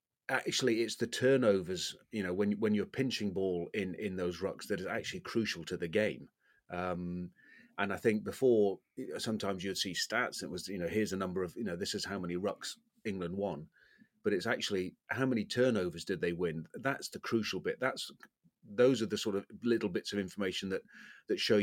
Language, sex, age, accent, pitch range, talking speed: English, male, 30-49, British, 95-115 Hz, 205 wpm